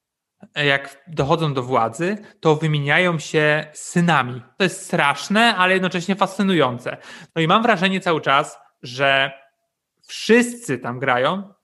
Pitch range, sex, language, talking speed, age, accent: 145-180 Hz, male, Polish, 125 wpm, 20-39, native